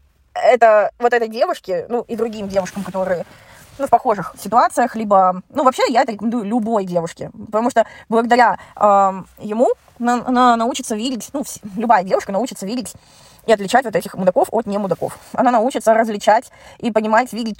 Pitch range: 190-235 Hz